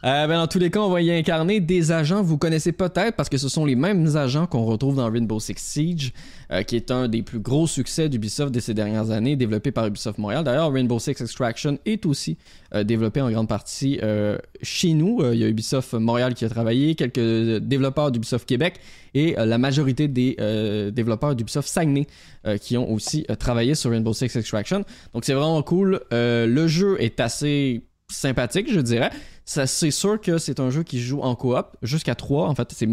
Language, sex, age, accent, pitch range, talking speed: French, male, 20-39, Canadian, 115-155 Hz, 215 wpm